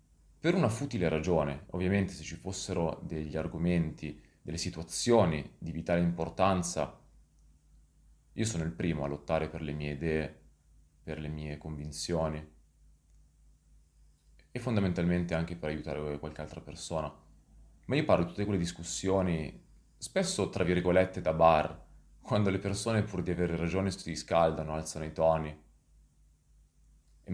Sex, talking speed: male, 135 wpm